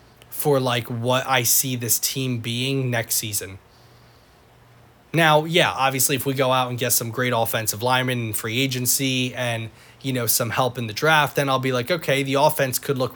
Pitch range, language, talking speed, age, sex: 115-135 Hz, English, 195 wpm, 20-39, male